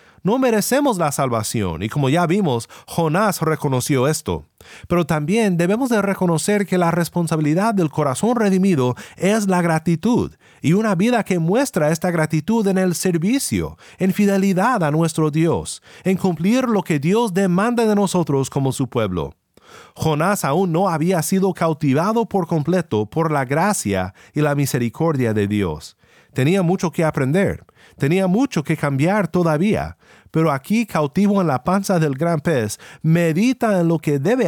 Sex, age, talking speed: male, 40-59, 155 wpm